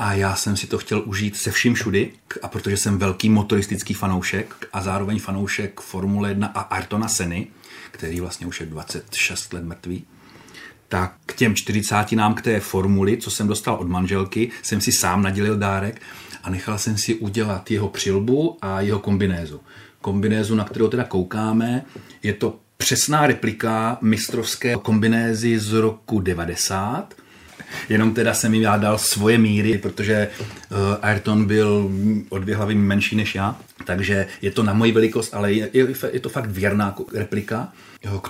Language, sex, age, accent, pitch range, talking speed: Czech, male, 40-59, native, 95-110 Hz, 160 wpm